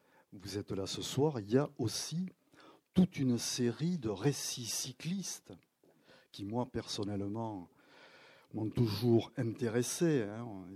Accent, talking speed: French, 125 wpm